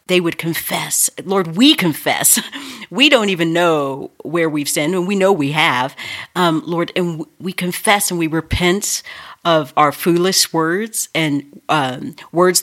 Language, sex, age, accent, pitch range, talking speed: English, female, 40-59, American, 145-180 Hz, 155 wpm